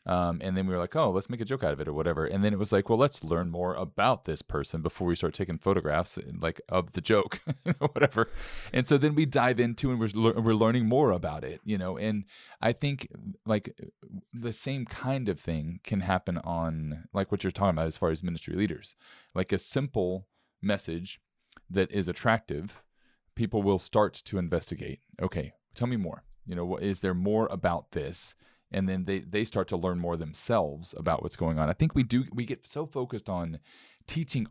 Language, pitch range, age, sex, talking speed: English, 90-120 Hz, 30-49, male, 215 wpm